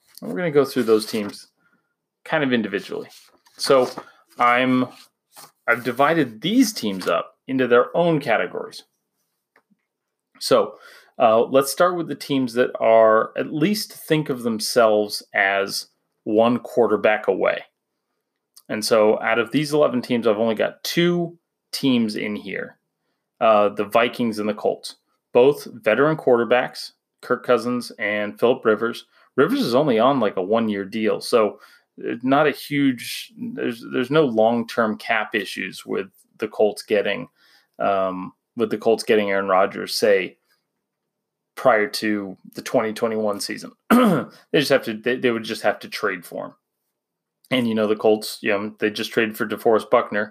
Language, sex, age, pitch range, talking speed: English, male, 30-49, 110-155 Hz, 155 wpm